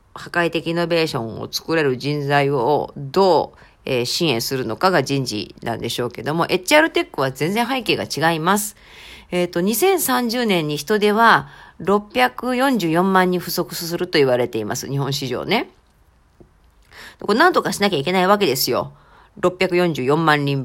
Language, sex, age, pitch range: Japanese, female, 40-59, 145-225 Hz